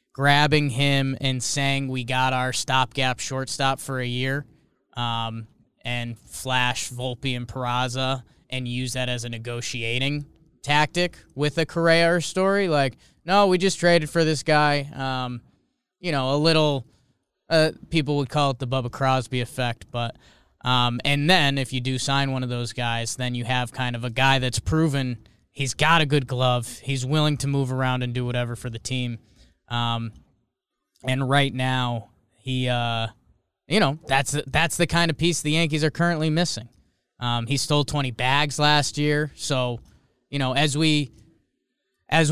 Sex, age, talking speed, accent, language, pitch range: male, 20-39, 170 wpm, American, English, 125-150 Hz